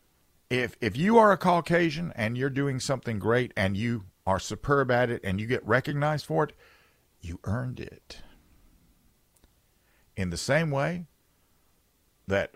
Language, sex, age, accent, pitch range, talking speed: English, male, 50-69, American, 90-130 Hz, 150 wpm